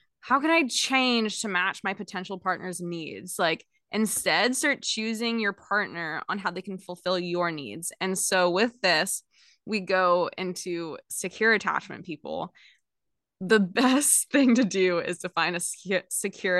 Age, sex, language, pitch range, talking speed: 20-39, female, English, 180-235 Hz, 155 wpm